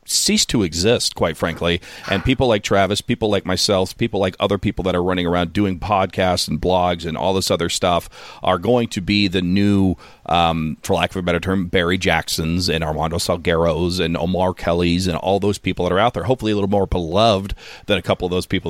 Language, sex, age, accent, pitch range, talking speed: English, male, 40-59, American, 90-105 Hz, 220 wpm